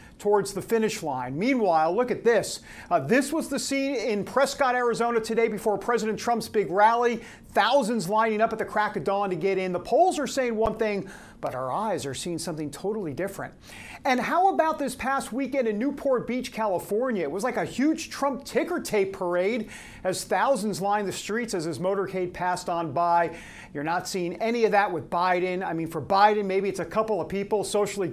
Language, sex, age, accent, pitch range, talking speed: English, male, 50-69, American, 190-240 Hz, 205 wpm